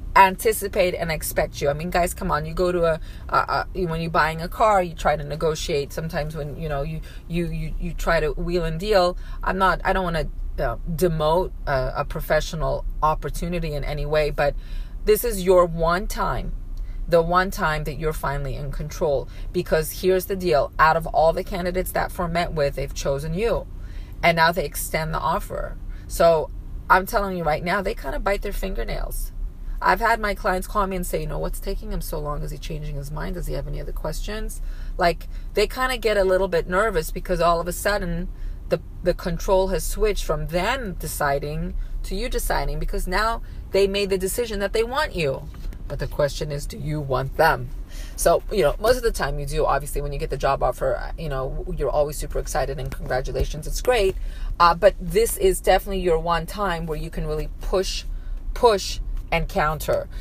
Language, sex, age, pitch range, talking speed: English, female, 30-49, 155-200 Hz, 210 wpm